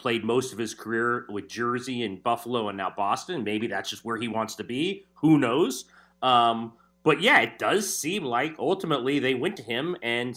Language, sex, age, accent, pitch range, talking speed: English, male, 30-49, American, 110-145 Hz, 205 wpm